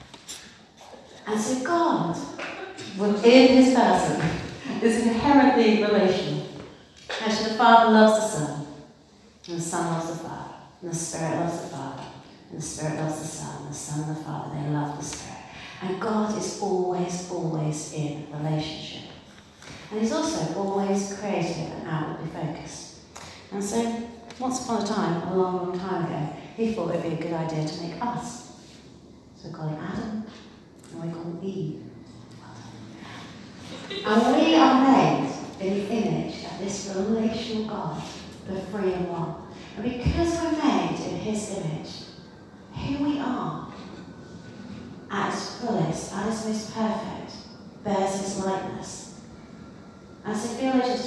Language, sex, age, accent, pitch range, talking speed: English, female, 40-59, British, 165-225 Hz, 150 wpm